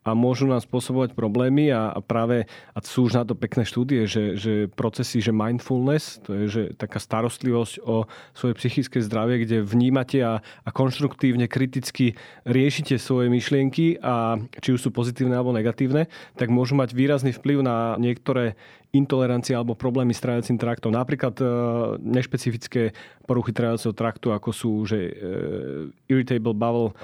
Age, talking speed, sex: 30-49, 150 wpm, male